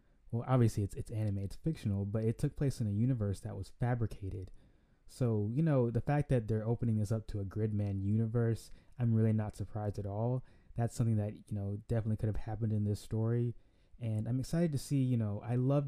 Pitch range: 105-120 Hz